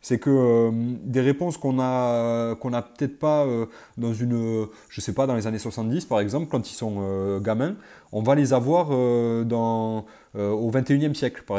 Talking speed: 210 wpm